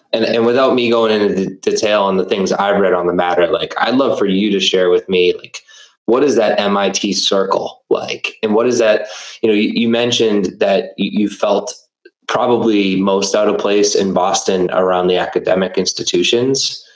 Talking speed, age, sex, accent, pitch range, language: 195 wpm, 20-39, male, American, 90-115 Hz, English